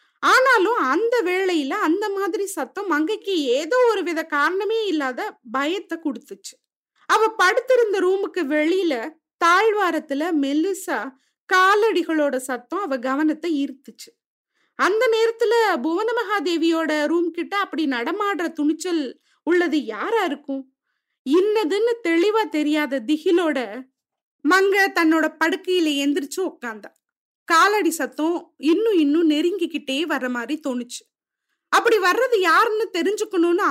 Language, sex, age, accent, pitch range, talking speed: Tamil, female, 30-49, native, 280-380 Hz, 105 wpm